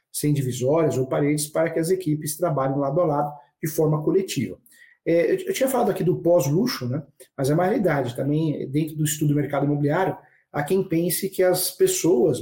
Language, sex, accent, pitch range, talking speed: Portuguese, male, Brazilian, 145-170 Hz, 190 wpm